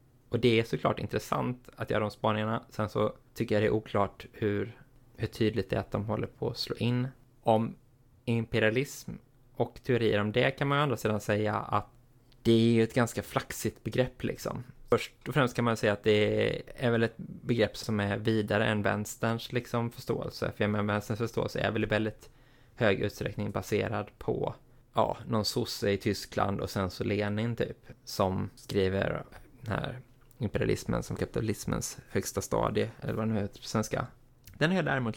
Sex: male